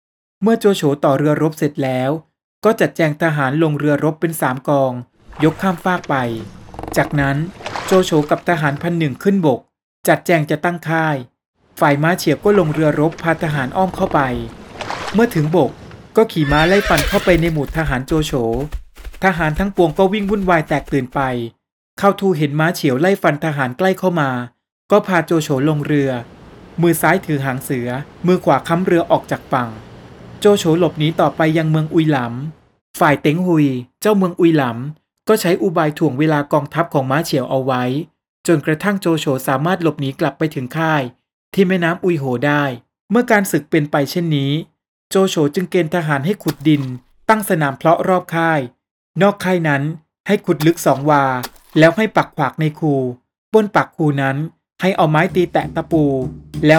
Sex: male